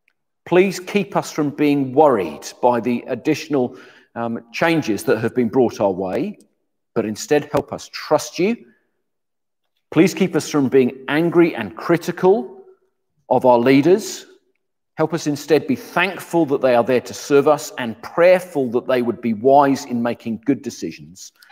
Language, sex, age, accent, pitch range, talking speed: English, male, 40-59, British, 120-165 Hz, 160 wpm